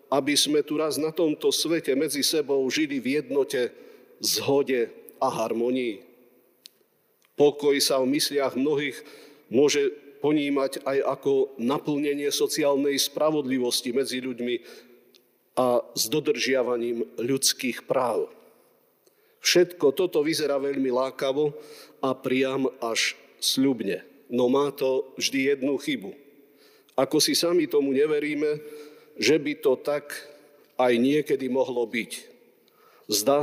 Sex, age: male, 50-69